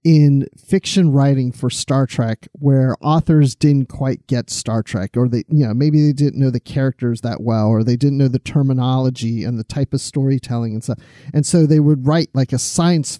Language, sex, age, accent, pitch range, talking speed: English, male, 40-59, American, 130-165 Hz, 210 wpm